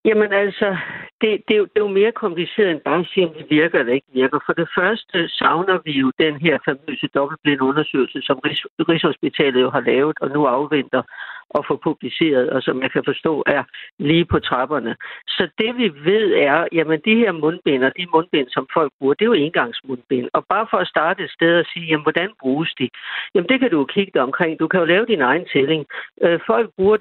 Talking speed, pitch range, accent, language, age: 220 wpm, 150-195 Hz, native, Danish, 60-79